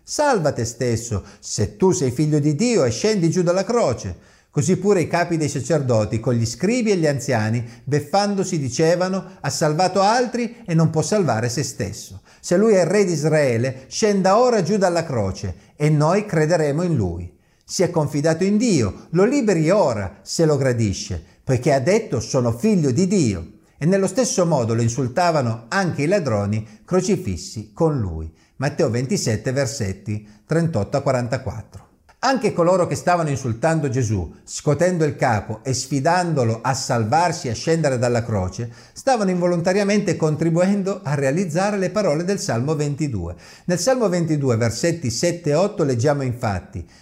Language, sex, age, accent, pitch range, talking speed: Italian, male, 50-69, native, 120-185 Hz, 160 wpm